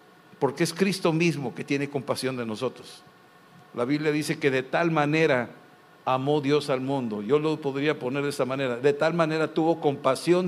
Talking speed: 185 wpm